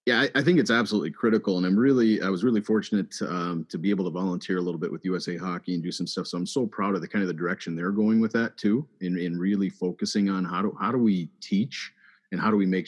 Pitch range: 85-100 Hz